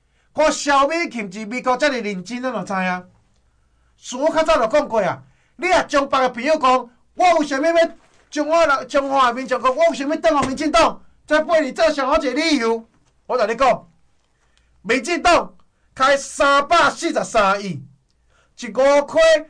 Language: Chinese